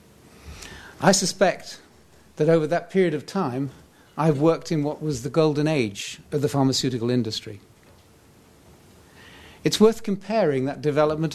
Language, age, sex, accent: English, 50-69, male, British